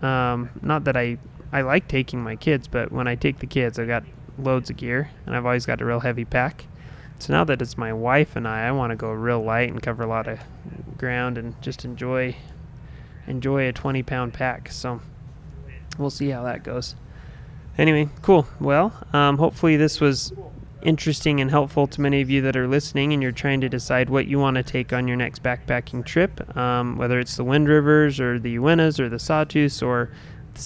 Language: English